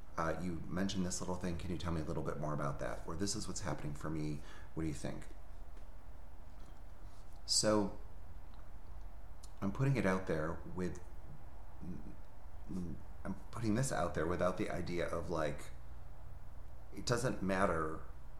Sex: male